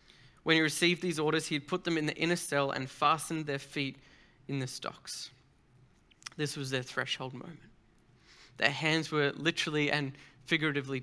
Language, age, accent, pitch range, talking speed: English, 20-39, Australian, 140-160 Hz, 170 wpm